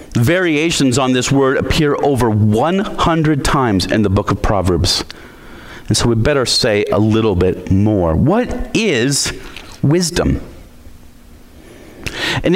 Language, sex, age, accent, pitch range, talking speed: English, male, 40-59, American, 110-165 Hz, 125 wpm